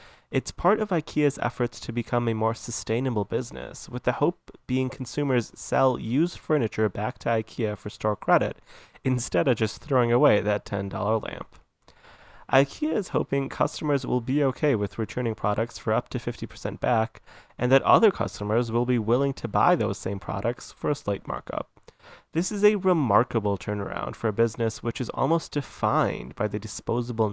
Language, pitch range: English, 105-135 Hz